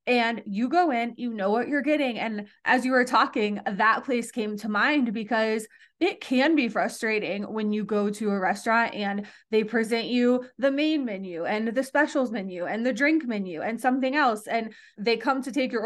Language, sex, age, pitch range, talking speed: English, female, 20-39, 215-275 Hz, 205 wpm